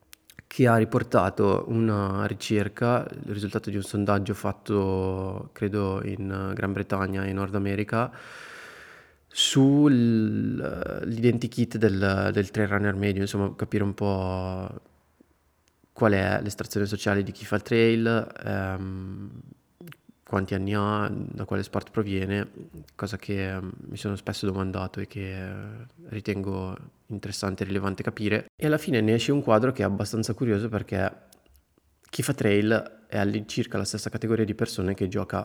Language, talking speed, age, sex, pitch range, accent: Italian, 140 wpm, 20-39, male, 100-110 Hz, native